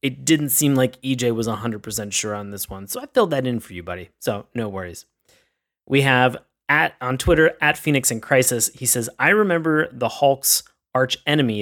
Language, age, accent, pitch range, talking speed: English, 30-49, American, 110-135 Hz, 200 wpm